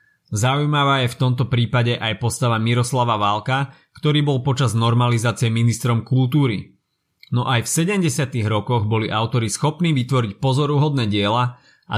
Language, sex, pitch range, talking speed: Slovak, male, 115-145 Hz, 135 wpm